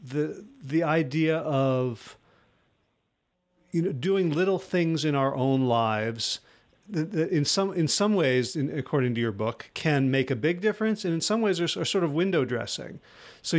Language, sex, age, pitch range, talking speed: English, male, 40-59, 135-170 Hz, 180 wpm